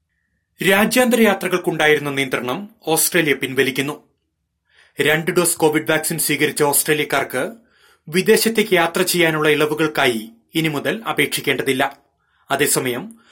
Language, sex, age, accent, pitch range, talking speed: Malayalam, male, 30-49, native, 140-175 Hz, 80 wpm